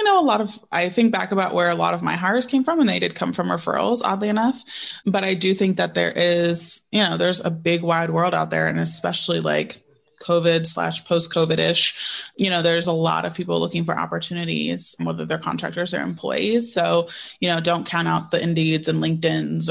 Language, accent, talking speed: English, American, 220 wpm